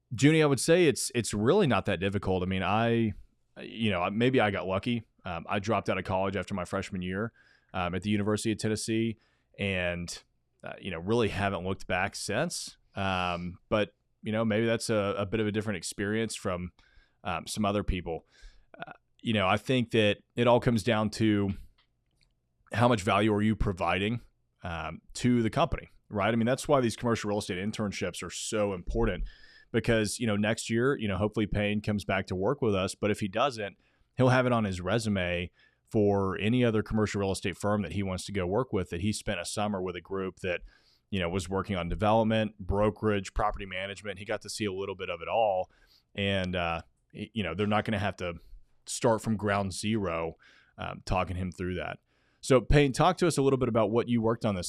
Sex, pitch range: male, 95-115 Hz